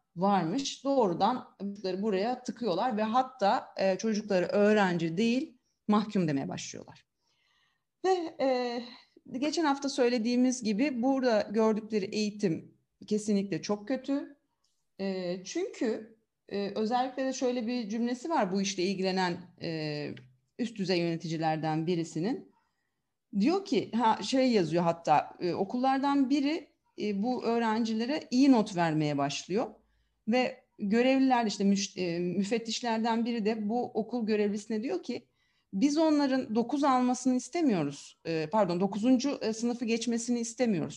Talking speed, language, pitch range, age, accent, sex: 125 wpm, Turkish, 190-255 Hz, 40-59, native, female